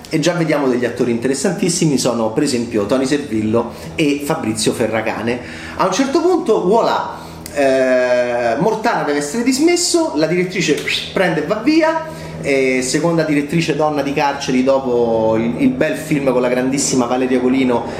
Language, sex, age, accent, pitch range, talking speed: Italian, male, 30-49, native, 130-195 Hz, 155 wpm